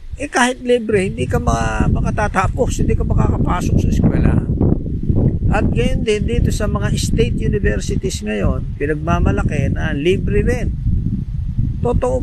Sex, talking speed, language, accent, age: male, 125 wpm, Filipino, native, 50-69